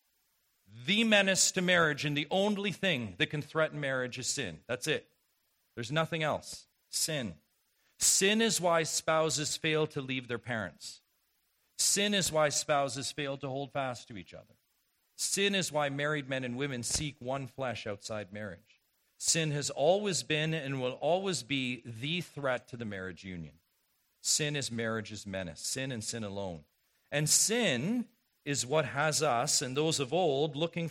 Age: 40-59